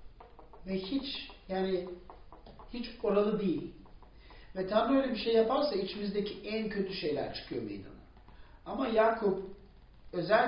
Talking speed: 120 wpm